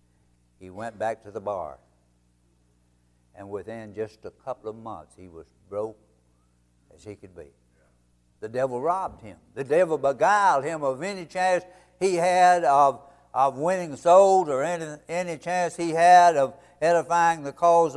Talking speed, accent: 155 wpm, American